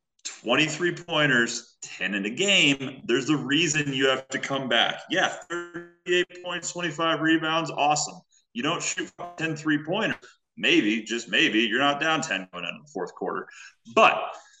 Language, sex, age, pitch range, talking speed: English, male, 30-49, 115-175 Hz, 160 wpm